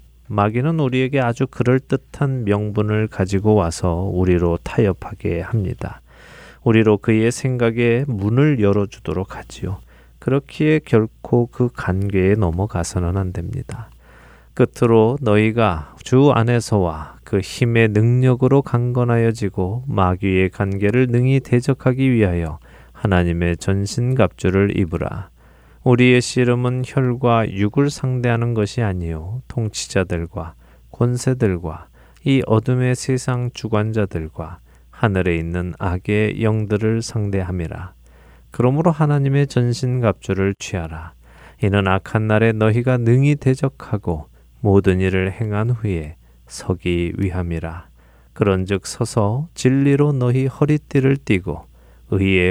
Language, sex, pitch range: Korean, male, 90-125 Hz